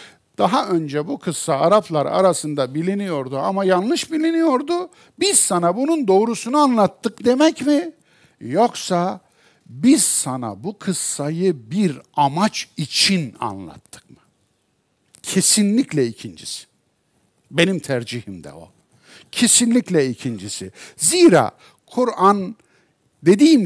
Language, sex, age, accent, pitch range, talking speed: Turkish, male, 60-79, native, 130-200 Hz, 95 wpm